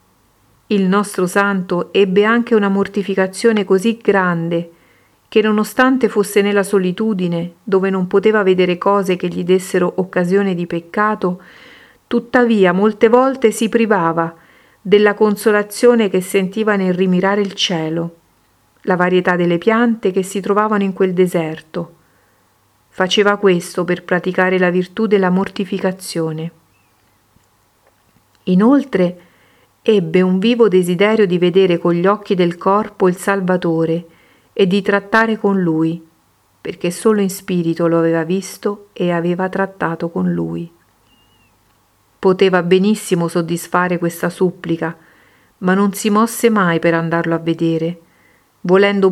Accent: native